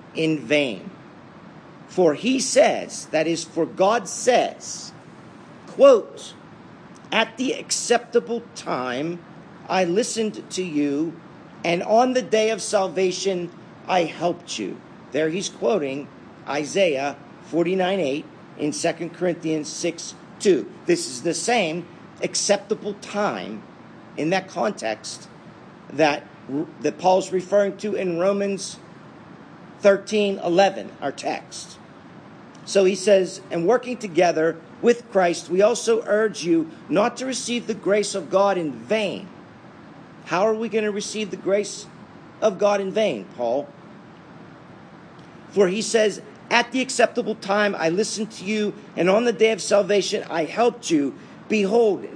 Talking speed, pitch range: 130 wpm, 180-225 Hz